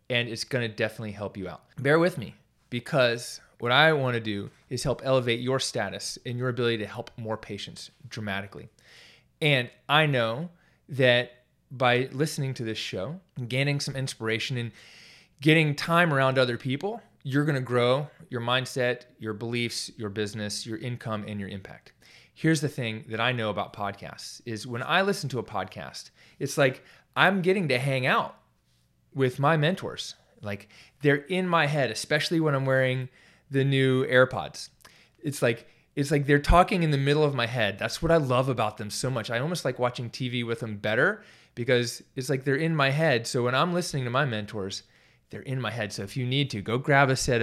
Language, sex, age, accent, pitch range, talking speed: English, male, 20-39, American, 115-145 Hz, 195 wpm